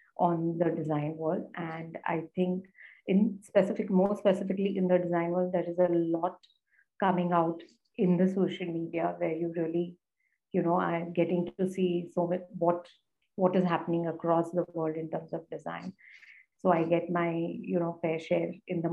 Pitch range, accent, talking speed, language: 170-185 Hz, Indian, 180 wpm, English